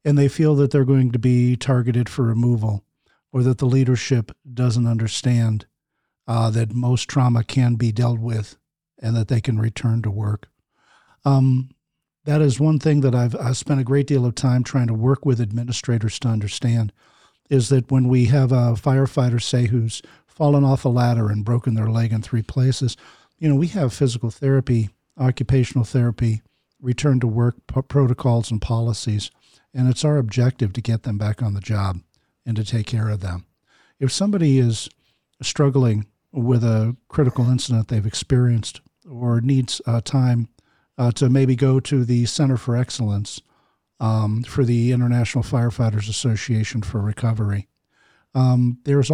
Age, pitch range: 50-69, 115-135 Hz